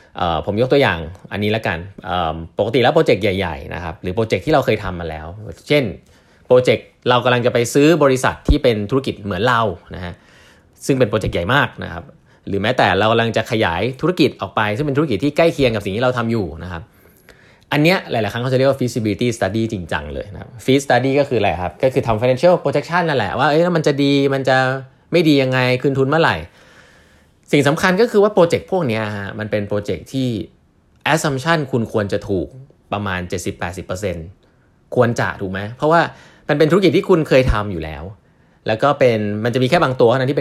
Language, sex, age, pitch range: Thai, male, 20-39, 100-140 Hz